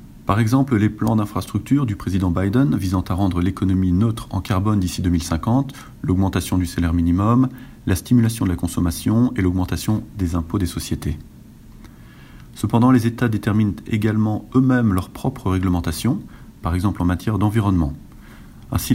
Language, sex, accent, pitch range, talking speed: English, male, French, 90-115 Hz, 150 wpm